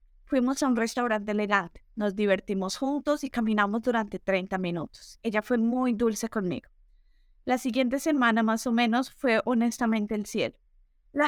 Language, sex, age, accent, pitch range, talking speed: Spanish, female, 20-39, Colombian, 220-275 Hz, 155 wpm